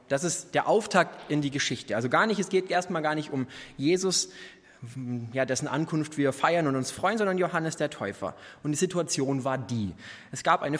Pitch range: 125-160 Hz